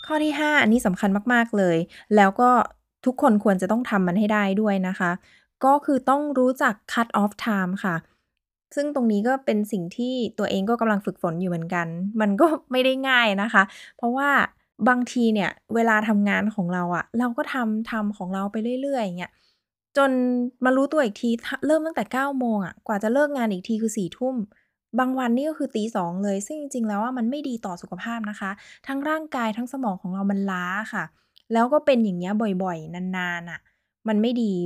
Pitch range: 195-255 Hz